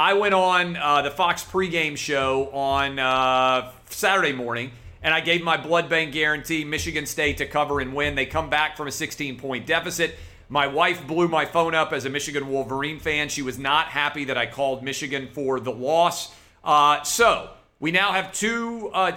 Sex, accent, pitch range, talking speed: male, American, 140-175 Hz, 190 wpm